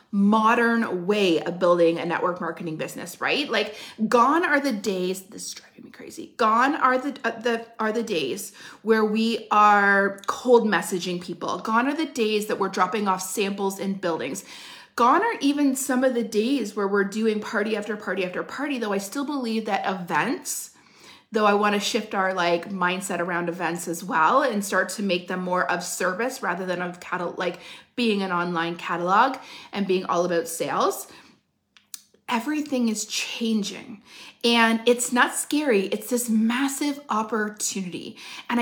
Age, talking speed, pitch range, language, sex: 30-49, 170 wpm, 190-245 Hz, English, female